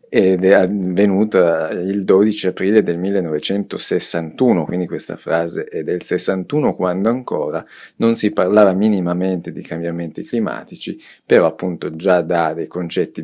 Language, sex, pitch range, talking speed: Italian, male, 85-100 Hz, 130 wpm